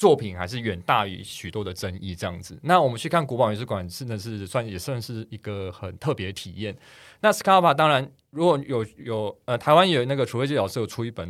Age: 20-39